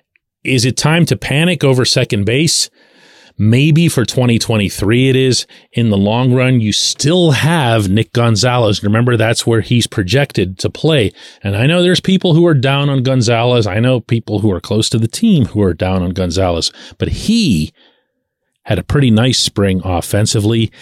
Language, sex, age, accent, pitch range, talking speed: English, male, 40-59, American, 100-130 Hz, 175 wpm